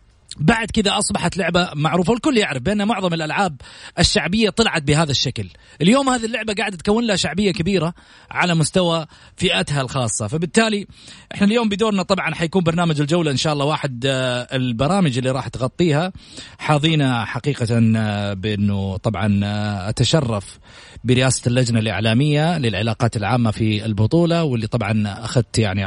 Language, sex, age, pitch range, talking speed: Arabic, male, 30-49, 115-155 Hz, 135 wpm